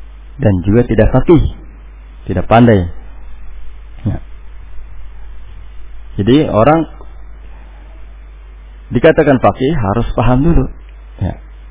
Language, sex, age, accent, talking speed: Indonesian, male, 50-69, native, 75 wpm